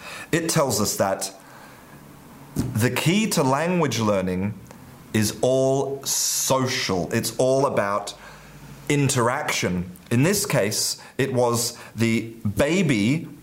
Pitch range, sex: 125-165 Hz, male